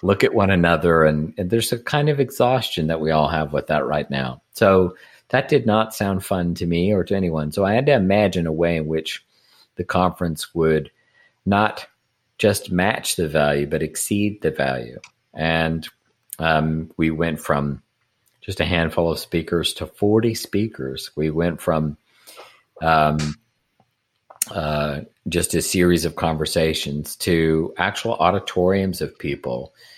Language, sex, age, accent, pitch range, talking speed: English, male, 50-69, American, 80-95 Hz, 160 wpm